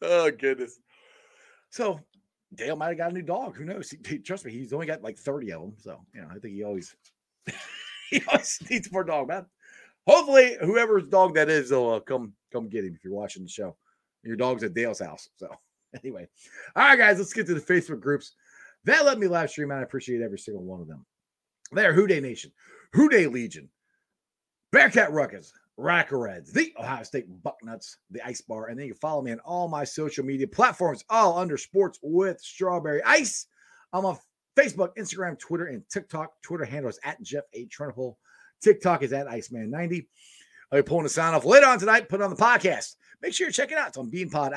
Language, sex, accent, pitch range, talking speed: English, male, American, 140-220 Hz, 210 wpm